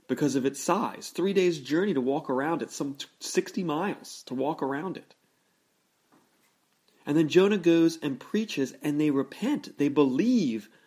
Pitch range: 115-160 Hz